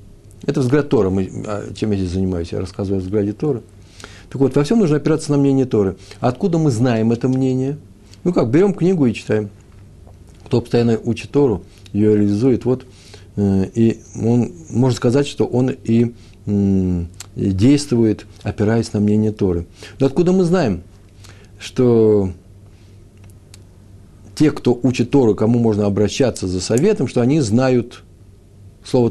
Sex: male